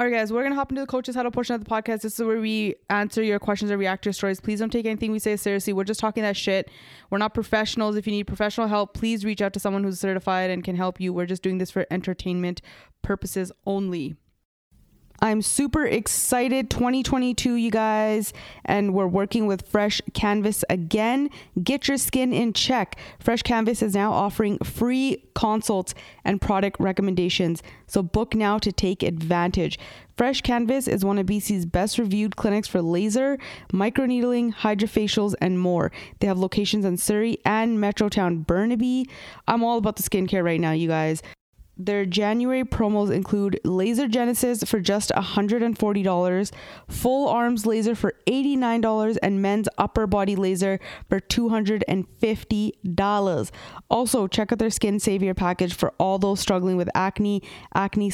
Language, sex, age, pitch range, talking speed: English, female, 20-39, 195-225 Hz, 170 wpm